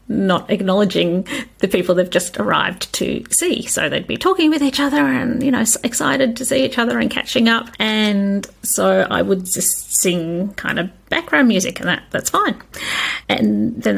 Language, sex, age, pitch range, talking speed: English, female, 40-59, 195-265 Hz, 190 wpm